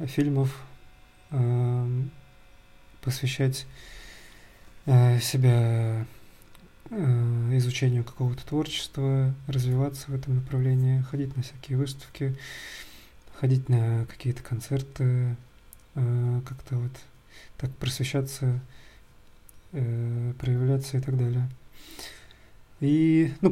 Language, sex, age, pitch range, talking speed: Russian, male, 20-39, 125-135 Hz, 70 wpm